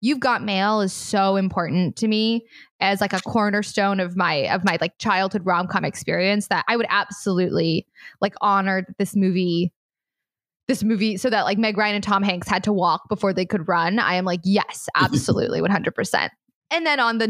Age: 20-39